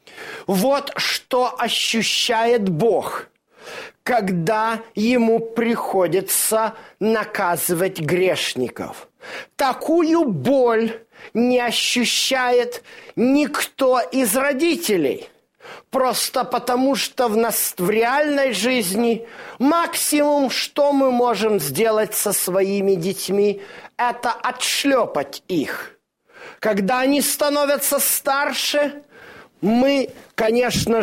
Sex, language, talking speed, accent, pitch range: male, Russian, 75 wpm, native, 215-270 Hz